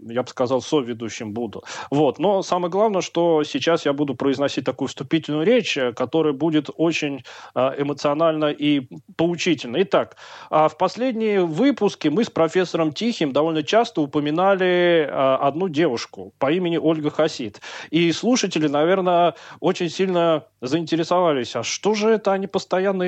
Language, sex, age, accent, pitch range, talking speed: Russian, male, 30-49, native, 145-190 Hz, 135 wpm